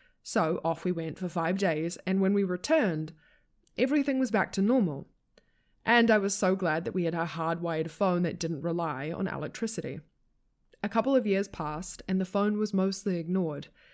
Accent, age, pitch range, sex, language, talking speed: Australian, 20-39, 165-210 Hz, female, English, 185 wpm